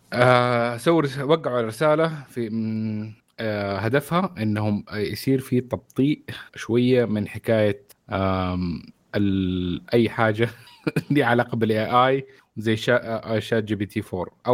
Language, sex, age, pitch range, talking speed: Arabic, male, 30-49, 105-125 Hz, 110 wpm